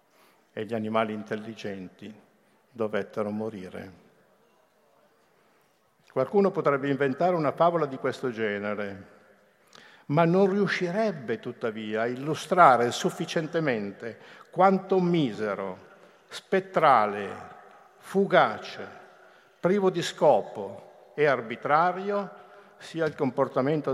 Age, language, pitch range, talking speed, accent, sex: 50-69, Italian, 110-155 Hz, 85 wpm, native, male